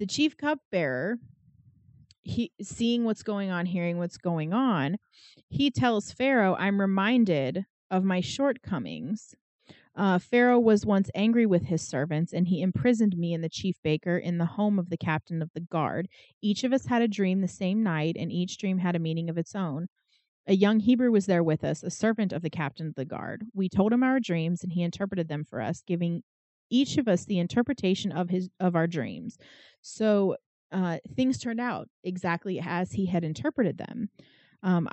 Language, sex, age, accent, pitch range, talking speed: English, female, 30-49, American, 170-220 Hz, 190 wpm